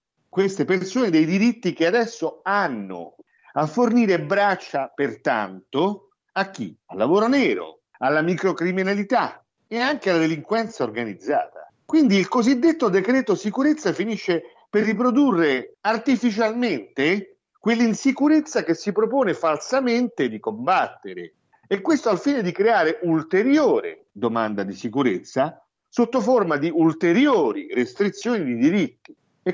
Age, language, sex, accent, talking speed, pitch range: 50-69, Italian, male, native, 120 wpm, 165-250 Hz